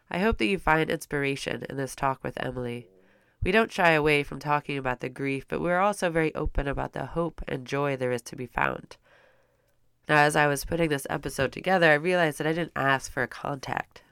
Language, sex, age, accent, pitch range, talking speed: English, female, 20-39, American, 125-165 Hz, 220 wpm